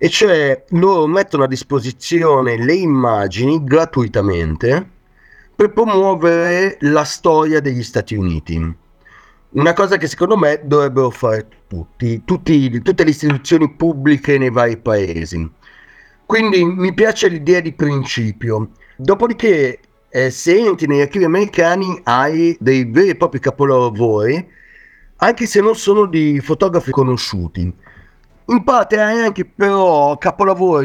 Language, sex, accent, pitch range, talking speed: Italian, male, native, 130-190 Hz, 125 wpm